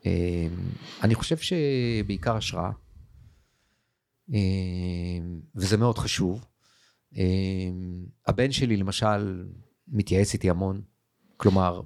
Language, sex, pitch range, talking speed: Hebrew, male, 95-120 Hz, 85 wpm